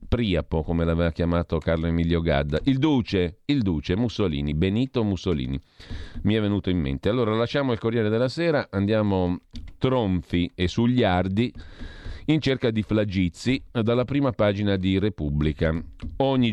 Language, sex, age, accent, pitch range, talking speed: Italian, male, 40-59, native, 85-115 Hz, 140 wpm